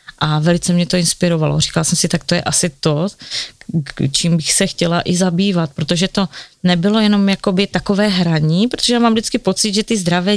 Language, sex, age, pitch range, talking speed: Czech, female, 30-49, 170-195 Hz, 195 wpm